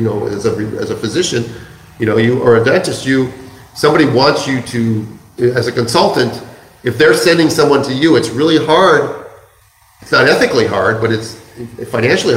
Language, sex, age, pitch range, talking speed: English, male, 40-59, 120-150 Hz, 180 wpm